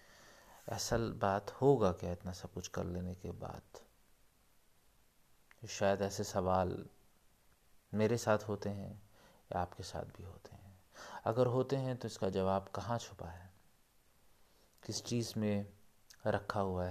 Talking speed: 135 wpm